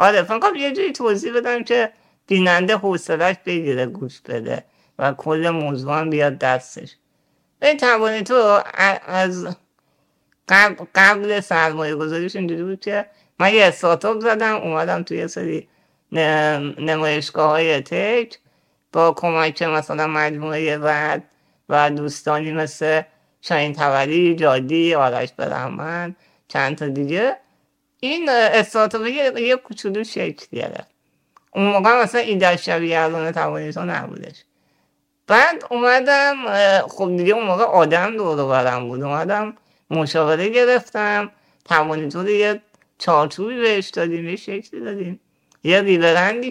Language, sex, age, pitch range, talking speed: Persian, male, 50-69, 155-215 Hz, 115 wpm